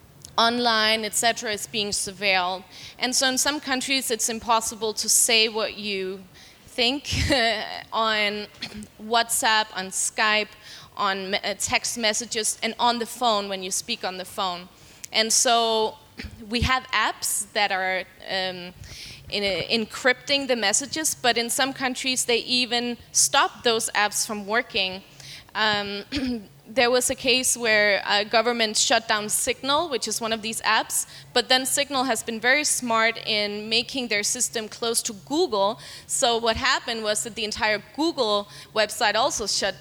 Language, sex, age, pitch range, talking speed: Danish, female, 20-39, 205-240 Hz, 150 wpm